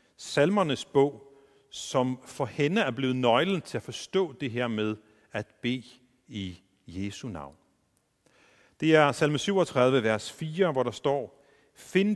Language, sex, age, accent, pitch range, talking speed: Danish, male, 40-59, native, 110-170 Hz, 145 wpm